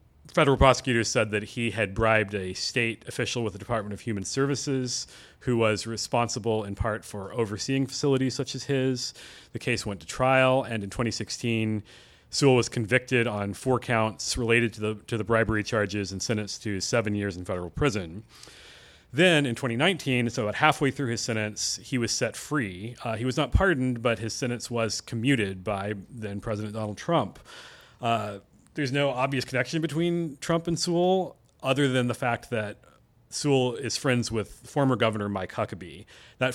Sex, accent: male, American